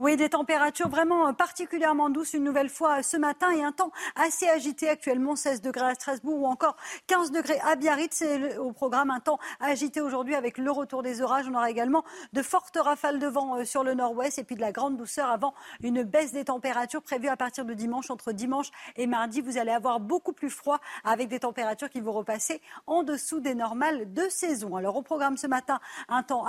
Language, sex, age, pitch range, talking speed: French, female, 50-69, 245-300 Hz, 215 wpm